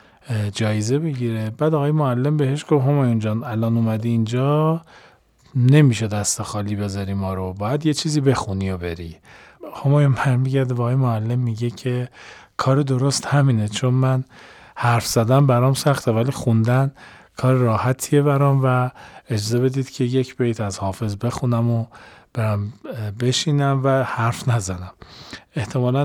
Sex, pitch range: male, 105-130 Hz